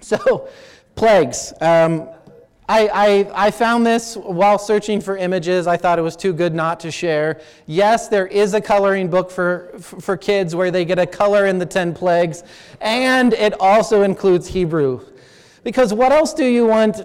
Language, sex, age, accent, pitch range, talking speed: English, male, 30-49, American, 155-205 Hz, 175 wpm